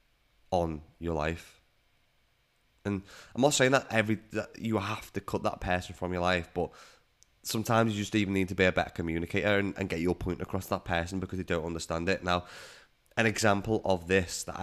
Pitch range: 85-95 Hz